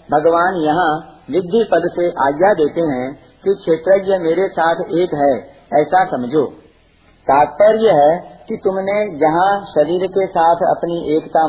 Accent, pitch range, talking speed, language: native, 150-195 Hz, 135 wpm, Hindi